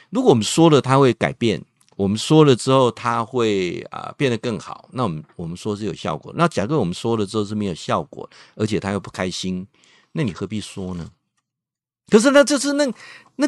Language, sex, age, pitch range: Chinese, male, 50-69, 105-155 Hz